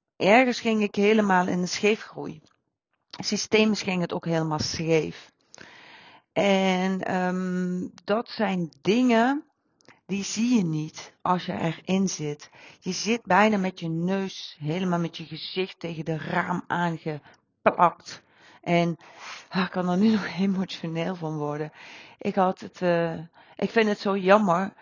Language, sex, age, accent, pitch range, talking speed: Dutch, female, 40-59, Dutch, 170-205 Hz, 145 wpm